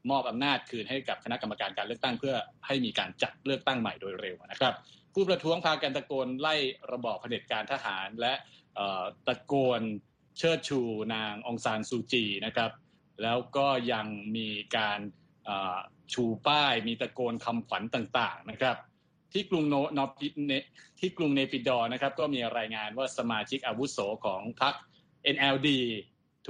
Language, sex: Thai, male